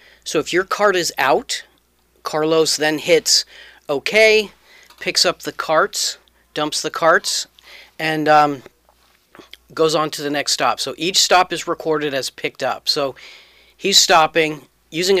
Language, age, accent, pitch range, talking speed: English, 40-59, American, 140-170 Hz, 145 wpm